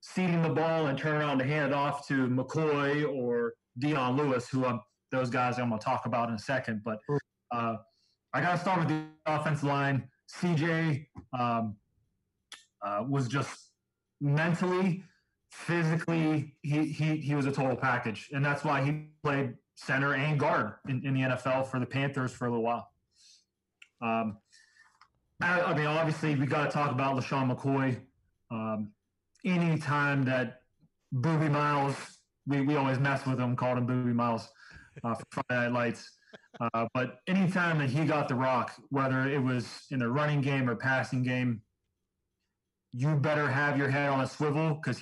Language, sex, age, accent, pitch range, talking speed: English, male, 30-49, American, 125-150 Hz, 175 wpm